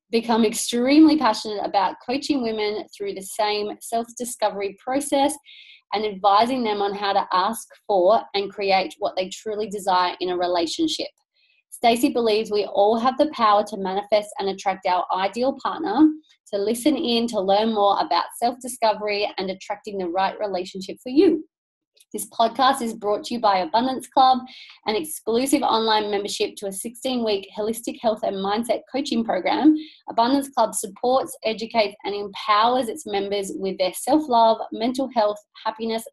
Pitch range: 205-270 Hz